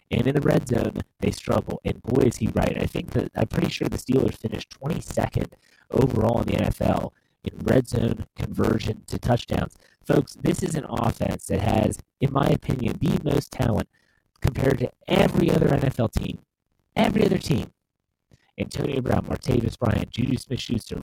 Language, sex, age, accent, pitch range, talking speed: English, male, 30-49, American, 105-135 Hz, 170 wpm